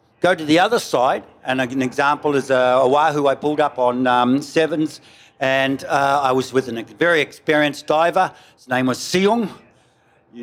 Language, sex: English, male